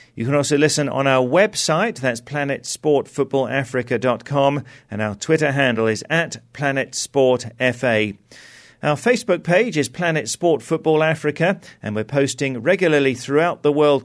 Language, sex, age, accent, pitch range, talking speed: English, male, 40-59, British, 120-150 Hz, 140 wpm